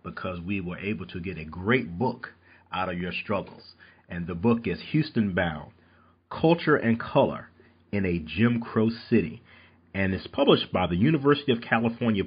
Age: 40-59